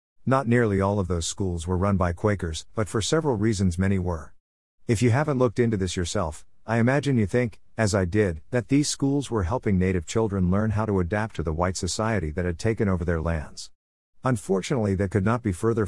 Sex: male